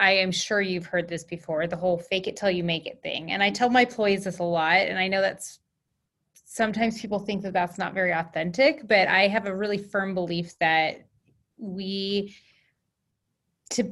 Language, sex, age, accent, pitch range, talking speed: English, female, 20-39, American, 180-220 Hz, 200 wpm